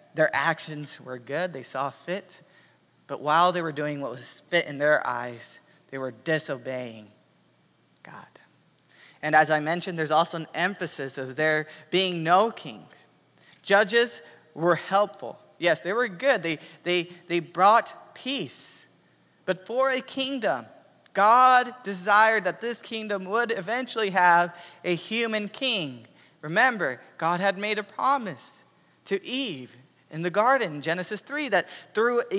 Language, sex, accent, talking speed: English, male, American, 145 wpm